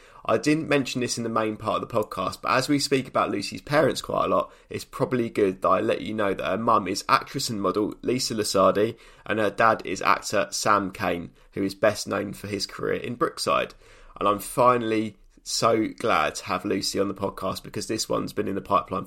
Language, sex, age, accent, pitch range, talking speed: English, male, 20-39, British, 100-125 Hz, 225 wpm